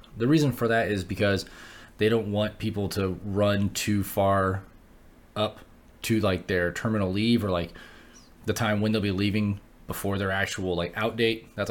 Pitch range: 95-115 Hz